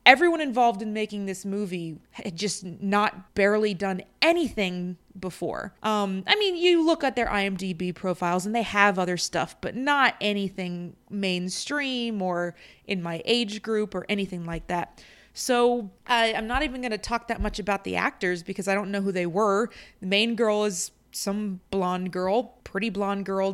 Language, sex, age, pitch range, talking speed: English, female, 20-39, 185-225 Hz, 180 wpm